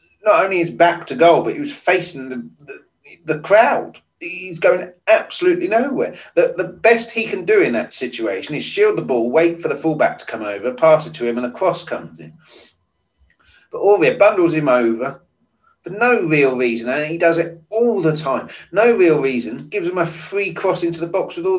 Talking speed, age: 210 wpm, 30-49